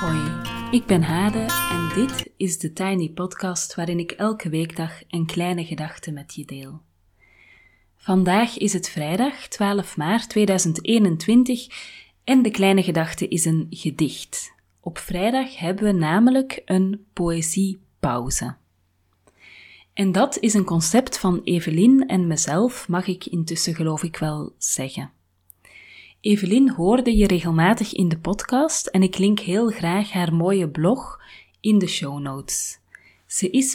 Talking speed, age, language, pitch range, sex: 140 wpm, 30-49, Dutch, 160-205 Hz, female